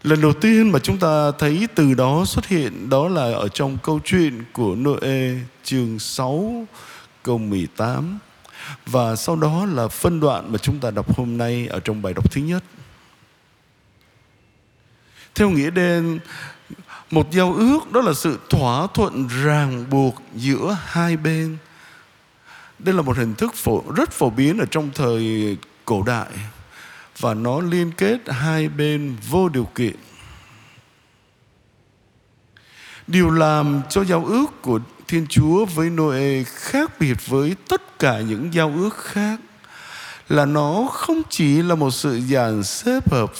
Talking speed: 150 wpm